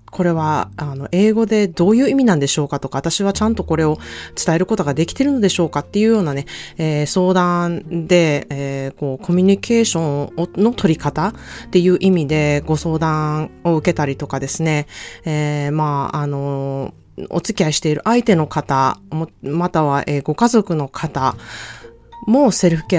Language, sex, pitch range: Japanese, female, 145-190 Hz